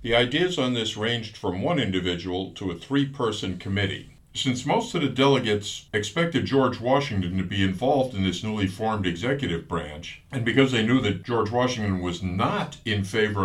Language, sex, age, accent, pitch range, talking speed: English, male, 60-79, American, 90-125 Hz, 180 wpm